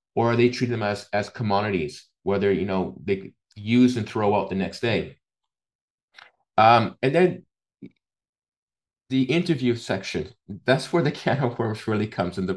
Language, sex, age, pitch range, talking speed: English, male, 30-49, 100-125 Hz, 160 wpm